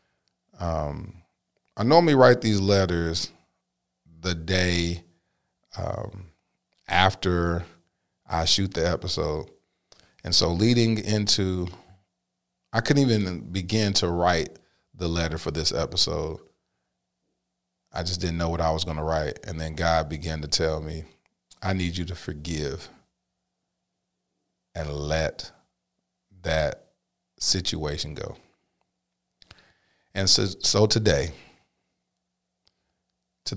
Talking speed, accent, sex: 110 wpm, American, male